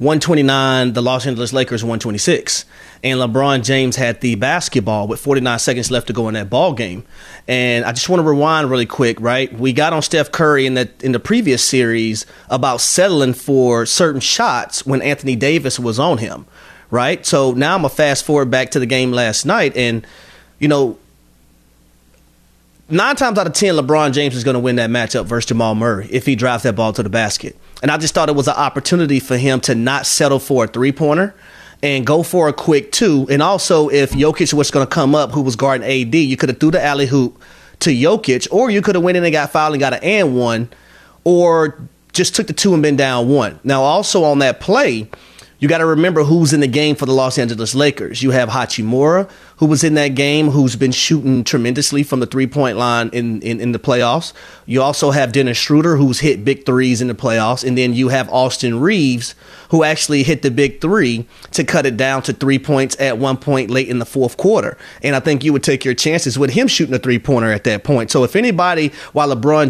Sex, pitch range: male, 125-150 Hz